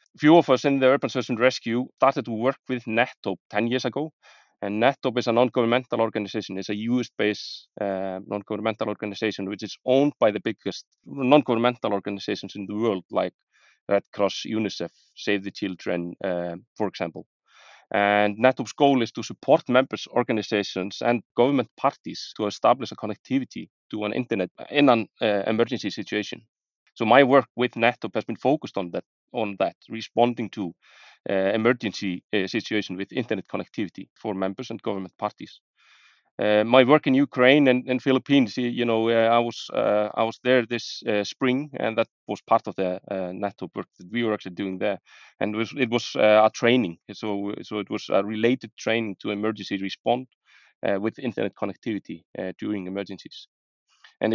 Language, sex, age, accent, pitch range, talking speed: English, male, 30-49, Finnish, 105-125 Hz, 180 wpm